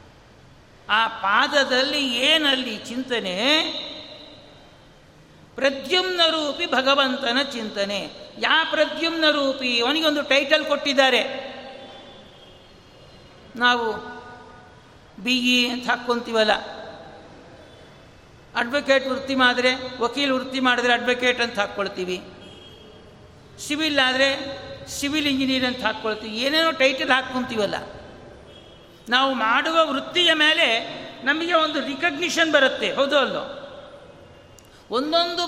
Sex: male